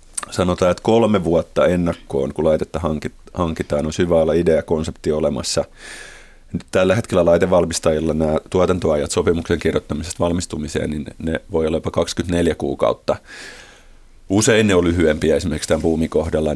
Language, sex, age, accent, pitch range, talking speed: Finnish, male, 30-49, native, 75-85 Hz, 125 wpm